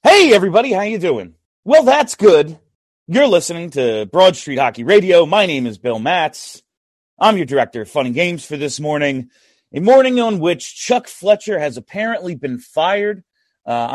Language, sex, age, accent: English, male, 30-49, American